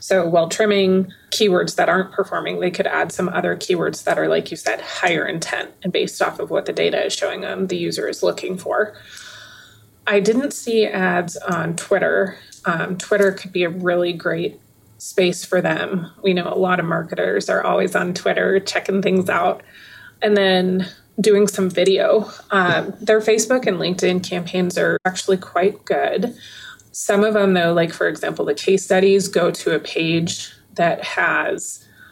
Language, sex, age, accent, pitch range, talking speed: English, female, 20-39, American, 180-205 Hz, 175 wpm